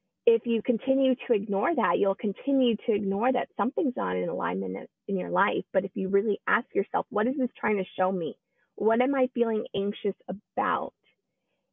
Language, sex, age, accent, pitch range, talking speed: English, female, 20-39, American, 195-240 Hz, 190 wpm